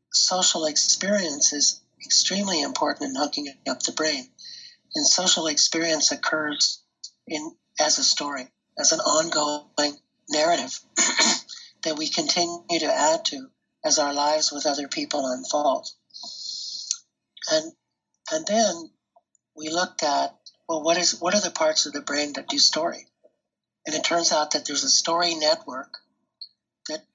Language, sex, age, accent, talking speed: English, male, 60-79, American, 140 wpm